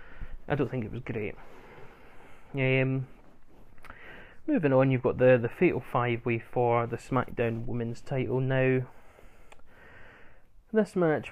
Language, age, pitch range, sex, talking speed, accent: English, 20-39, 115-130 Hz, male, 125 wpm, British